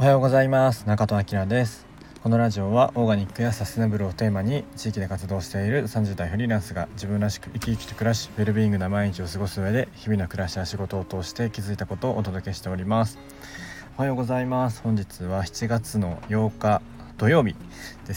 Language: Japanese